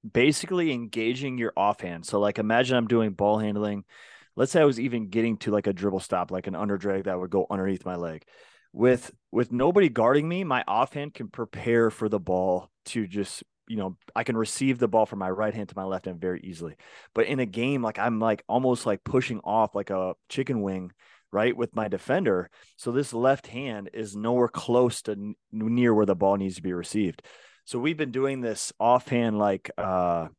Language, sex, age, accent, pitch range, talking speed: English, male, 30-49, American, 100-120 Hz, 205 wpm